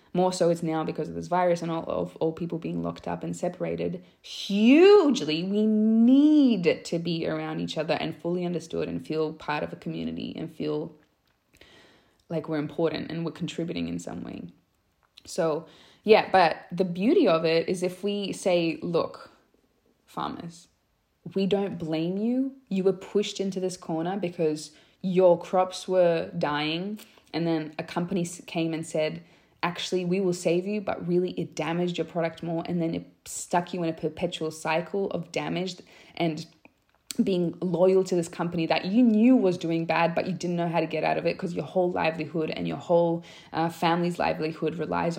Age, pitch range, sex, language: 20-39, 160-185 Hz, female, English